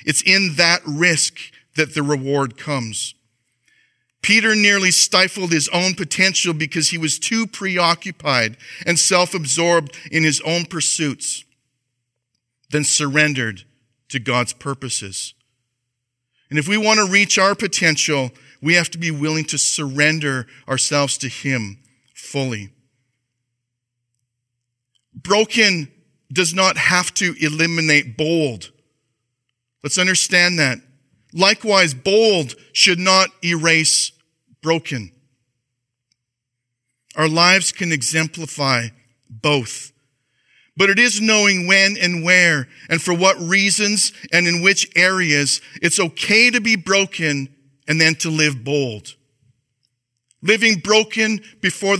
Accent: American